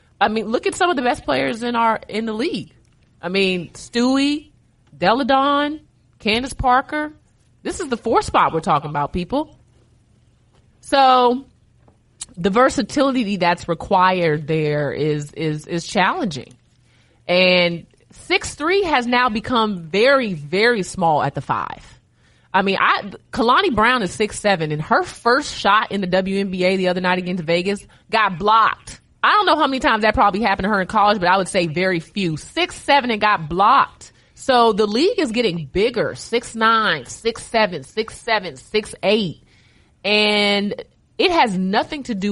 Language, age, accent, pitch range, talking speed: English, 20-39, American, 160-230 Hz, 160 wpm